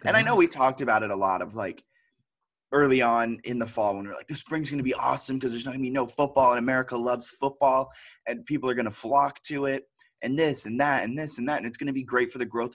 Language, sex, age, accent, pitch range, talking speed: English, male, 20-39, American, 110-135 Hz, 295 wpm